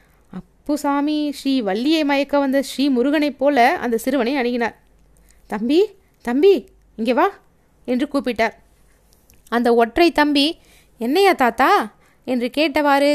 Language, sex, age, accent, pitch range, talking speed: Tamil, female, 20-39, native, 235-310 Hz, 110 wpm